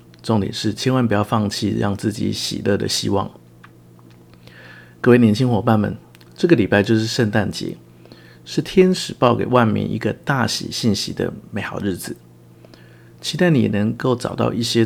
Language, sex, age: Chinese, male, 50-69